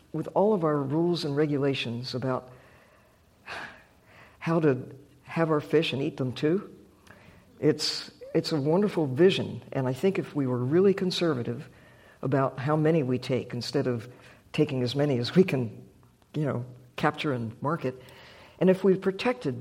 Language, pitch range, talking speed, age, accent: English, 125-175 Hz, 160 wpm, 60-79, American